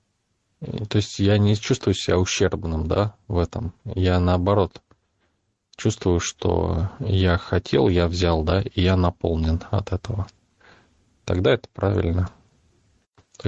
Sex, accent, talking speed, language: male, native, 125 wpm, Russian